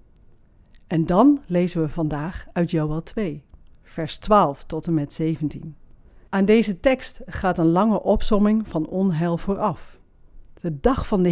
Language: Dutch